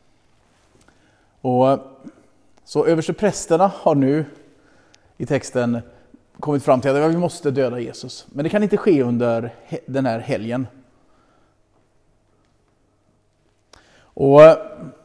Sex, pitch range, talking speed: male, 115-145 Hz, 100 wpm